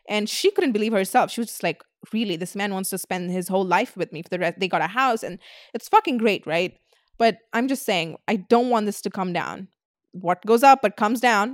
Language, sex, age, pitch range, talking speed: English, female, 20-39, 185-230 Hz, 255 wpm